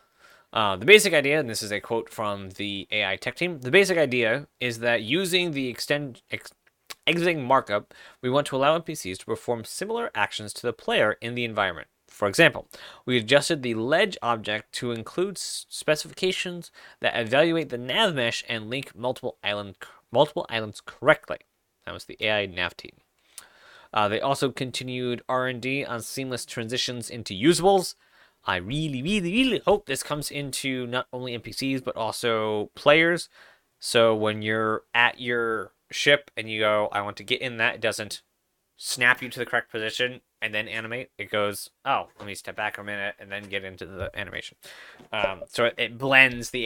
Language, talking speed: English, 175 wpm